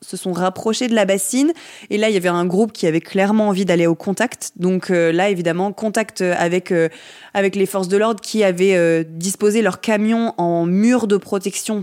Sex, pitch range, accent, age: female, 170-210 Hz, French, 20-39